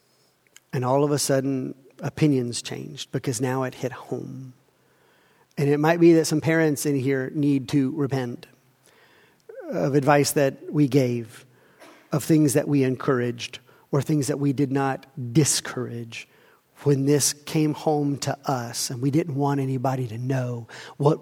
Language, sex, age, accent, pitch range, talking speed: English, male, 40-59, American, 140-180 Hz, 155 wpm